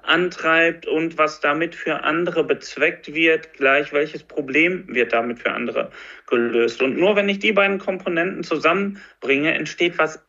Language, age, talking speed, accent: German, 40-59, 150 wpm, German